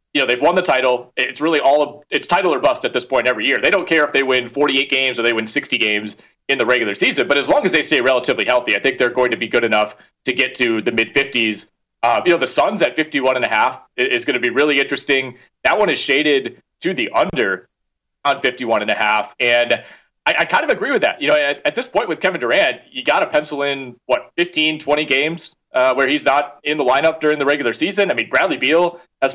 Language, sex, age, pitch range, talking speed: English, male, 30-49, 125-155 Hz, 260 wpm